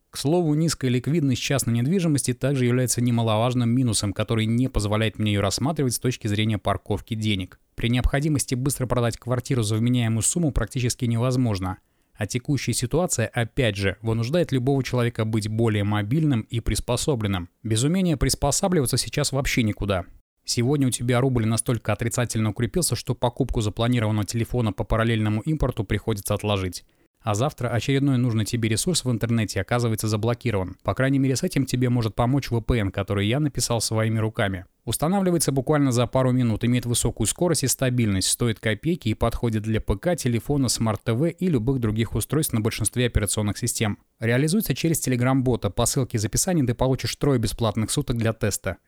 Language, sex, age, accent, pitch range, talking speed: Russian, male, 20-39, native, 110-130 Hz, 160 wpm